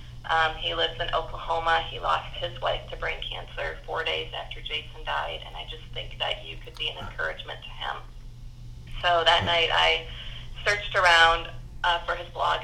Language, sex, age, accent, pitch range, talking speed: English, female, 30-49, American, 115-165 Hz, 185 wpm